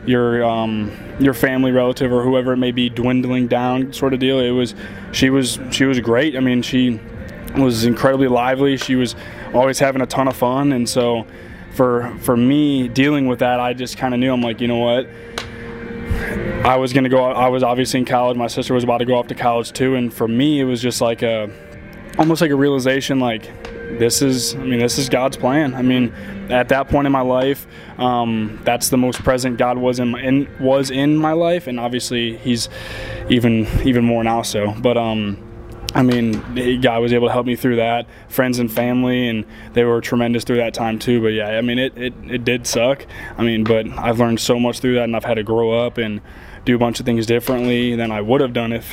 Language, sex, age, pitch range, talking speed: English, male, 20-39, 115-130 Hz, 225 wpm